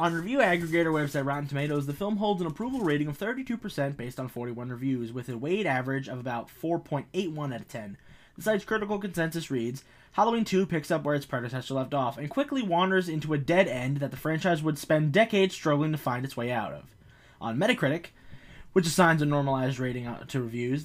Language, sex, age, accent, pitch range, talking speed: English, male, 20-39, American, 130-165 Hz, 205 wpm